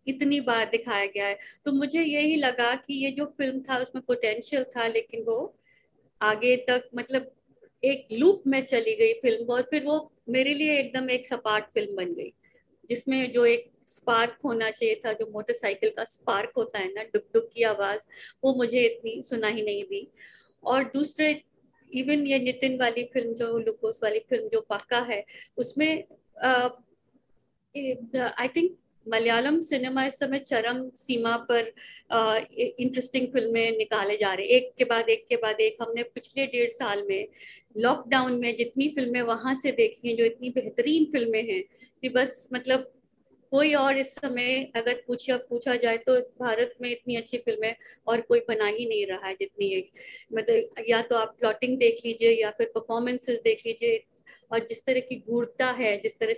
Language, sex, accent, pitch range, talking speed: Hindi, female, native, 235-290 Hz, 170 wpm